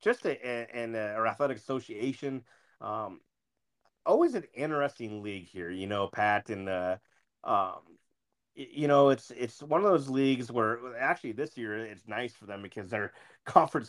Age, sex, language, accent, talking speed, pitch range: 30-49, male, English, American, 170 wpm, 105-125 Hz